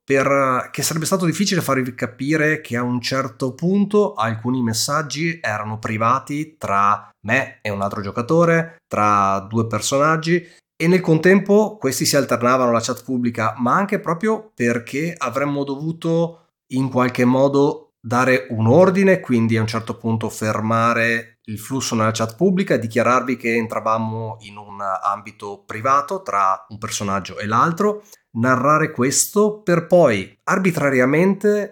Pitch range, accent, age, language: 115-160 Hz, native, 30-49, Italian